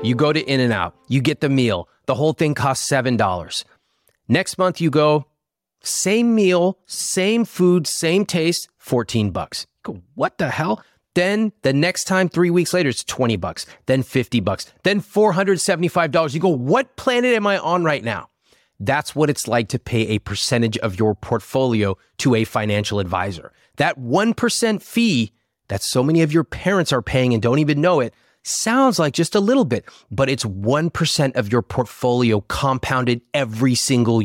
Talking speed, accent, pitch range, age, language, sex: 175 wpm, American, 110-165 Hz, 30-49, English, male